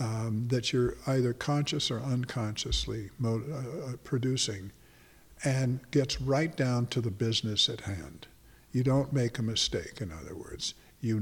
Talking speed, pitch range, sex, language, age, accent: 145 wpm, 115-145 Hz, male, English, 50-69, American